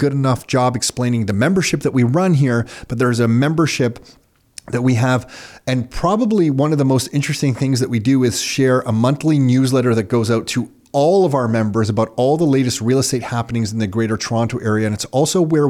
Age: 30-49